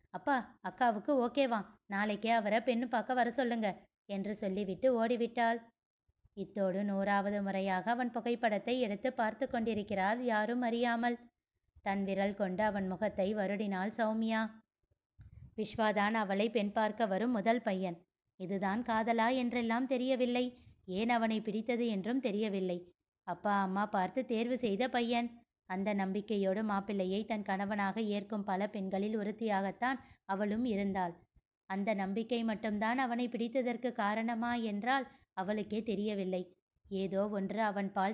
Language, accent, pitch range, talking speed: Tamil, native, 200-235 Hz, 120 wpm